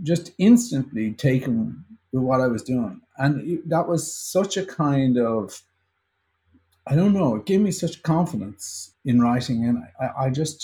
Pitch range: 110-145 Hz